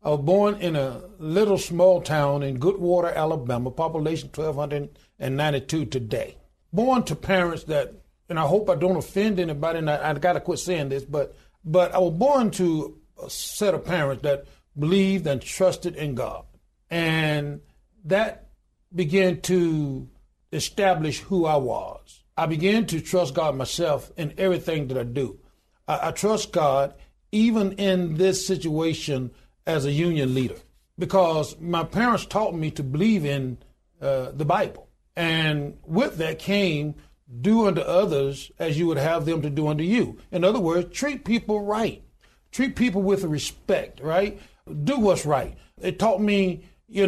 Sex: male